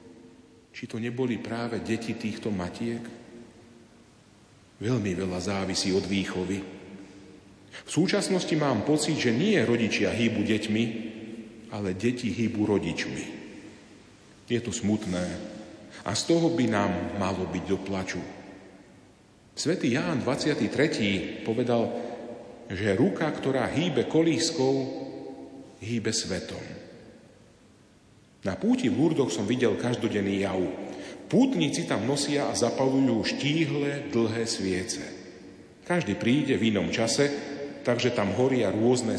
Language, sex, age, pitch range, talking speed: Slovak, male, 40-59, 100-125 Hz, 110 wpm